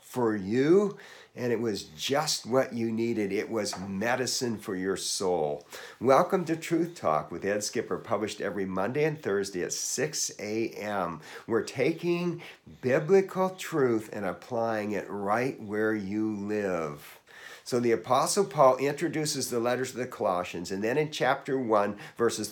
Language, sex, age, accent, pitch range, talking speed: English, male, 50-69, American, 110-145 Hz, 150 wpm